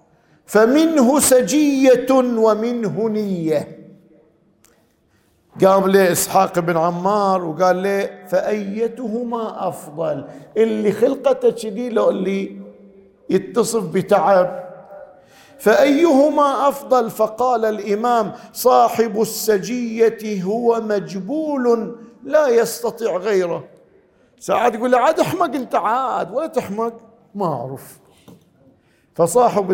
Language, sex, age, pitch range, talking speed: Arabic, male, 50-69, 175-235 Hz, 85 wpm